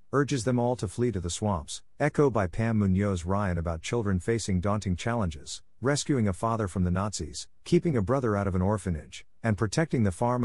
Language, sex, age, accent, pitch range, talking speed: English, male, 50-69, American, 90-115 Hz, 200 wpm